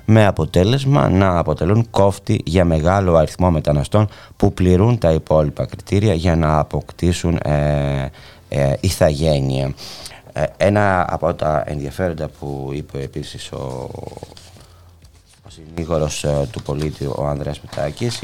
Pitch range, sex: 75-95 Hz, male